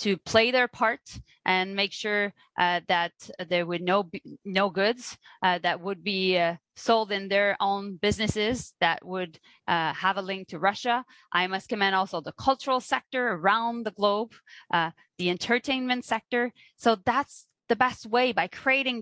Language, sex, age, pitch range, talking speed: English, female, 20-39, 185-245 Hz, 170 wpm